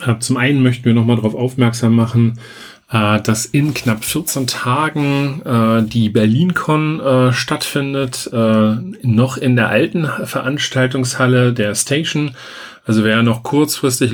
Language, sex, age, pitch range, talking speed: German, male, 40-59, 115-130 Hz, 115 wpm